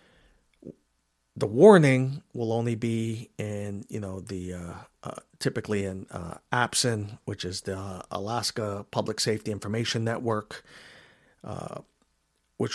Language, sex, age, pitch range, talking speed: English, male, 40-59, 100-130 Hz, 120 wpm